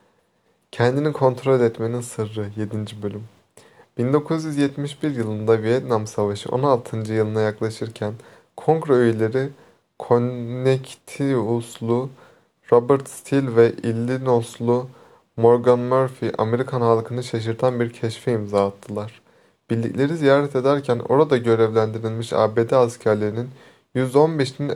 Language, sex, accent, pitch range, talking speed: Turkish, male, native, 115-130 Hz, 90 wpm